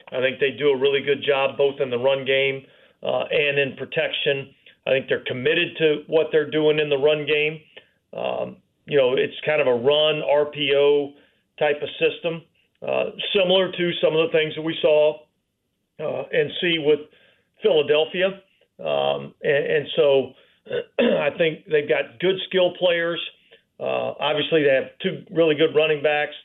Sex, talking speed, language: male, 170 wpm, English